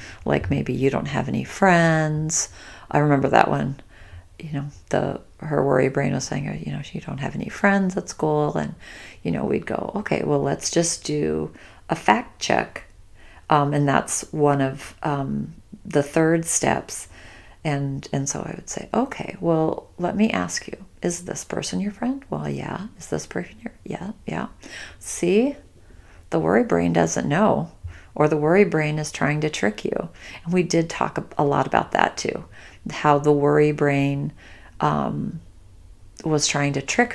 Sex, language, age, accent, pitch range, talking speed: female, English, 40-59, American, 95-155 Hz, 175 wpm